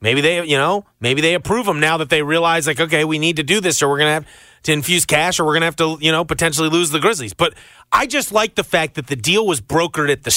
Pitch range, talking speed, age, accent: 130-190 Hz, 300 wpm, 30-49, American